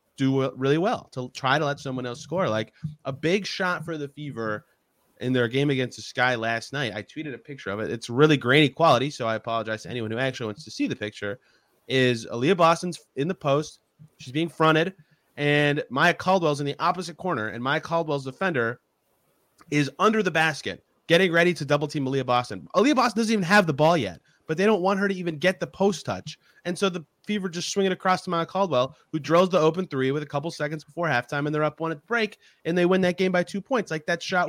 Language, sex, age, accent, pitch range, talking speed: English, male, 30-49, American, 135-175 Hz, 235 wpm